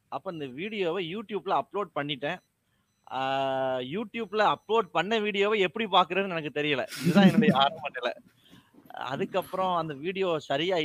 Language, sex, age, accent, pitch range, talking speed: Tamil, male, 30-49, native, 140-195 Hz, 115 wpm